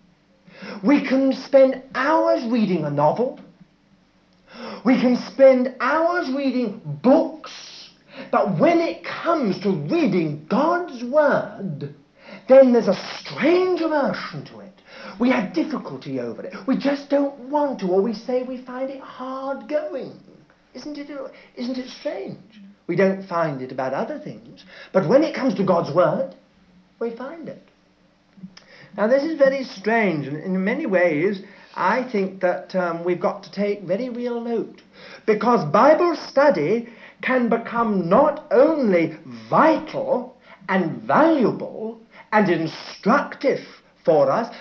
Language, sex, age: English, male, 60-79